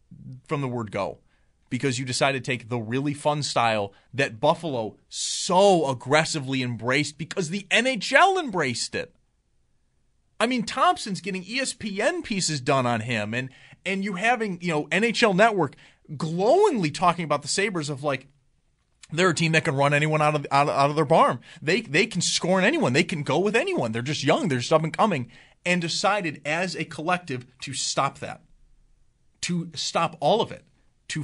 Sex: male